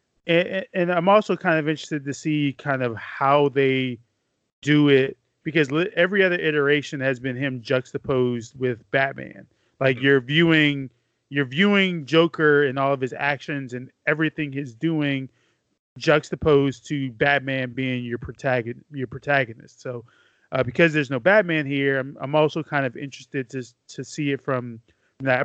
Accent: American